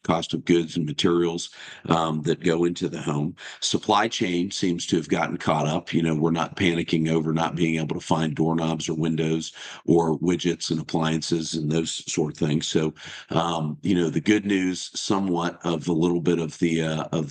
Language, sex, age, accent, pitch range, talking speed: English, male, 50-69, American, 80-90 Hz, 200 wpm